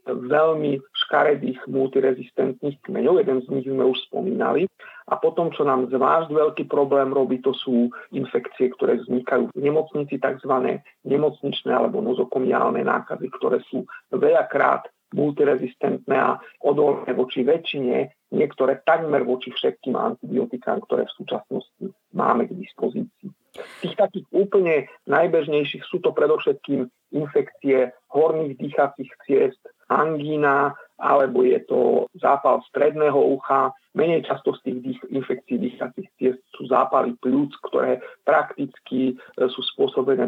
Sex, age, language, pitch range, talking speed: male, 50-69, Slovak, 130-215 Hz, 120 wpm